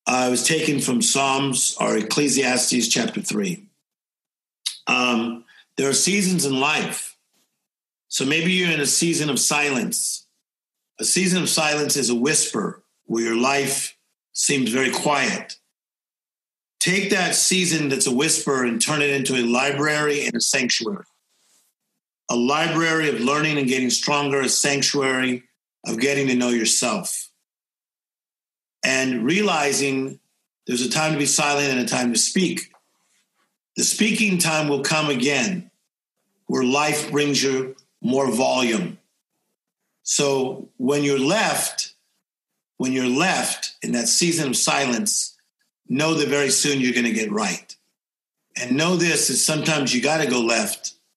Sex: male